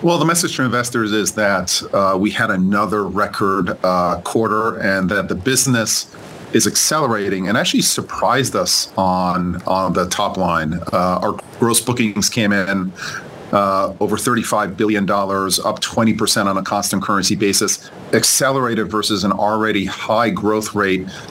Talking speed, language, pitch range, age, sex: 150 wpm, English, 100-115 Hz, 40-59, male